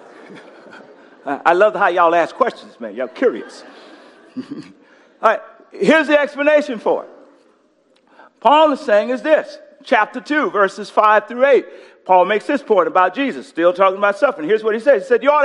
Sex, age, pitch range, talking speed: male, 50-69, 225-295 Hz, 175 wpm